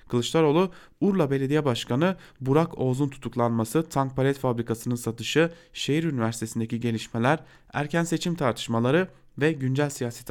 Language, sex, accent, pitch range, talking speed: German, male, Turkish, 115-150 Hz, 115 wpm